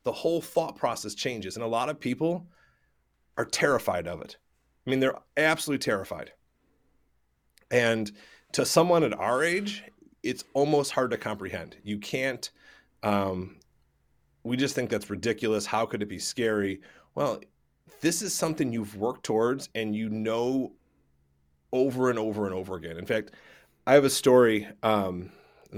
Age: 30-49